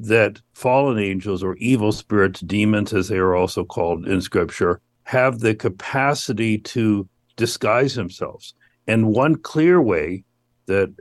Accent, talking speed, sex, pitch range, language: American, 135 wpm, male, 95-115 Hz, English